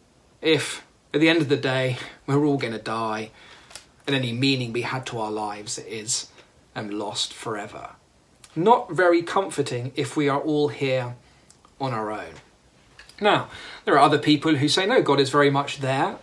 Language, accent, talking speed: English, British, 180 wpm